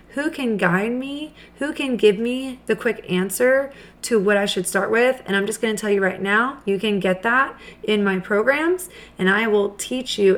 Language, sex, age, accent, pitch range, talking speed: English, female, 30-49, American, 190-230 Hz, 220 wpm